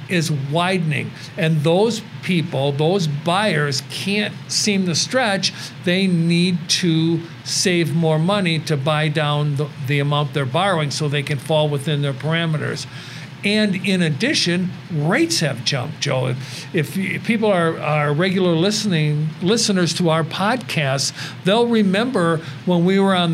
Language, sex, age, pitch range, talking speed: English, male, 50-69, 150-195 Hz, 145 wpm